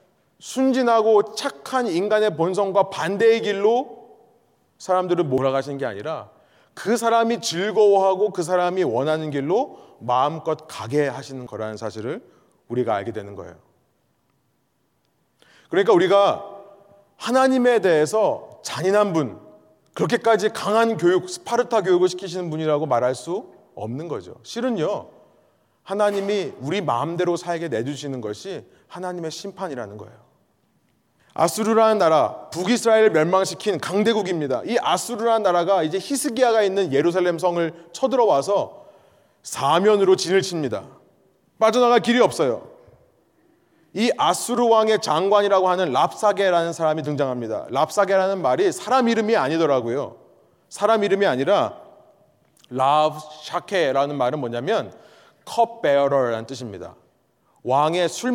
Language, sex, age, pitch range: Korean, male, 30-49, 150-220 Hz